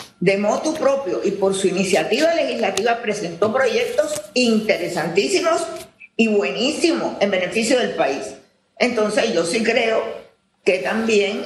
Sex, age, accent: female, 50-69, American